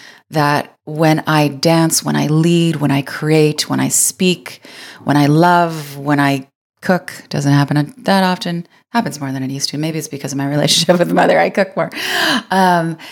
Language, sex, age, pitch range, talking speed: English, female, 30-49, 150-185 Hz, 190 wpm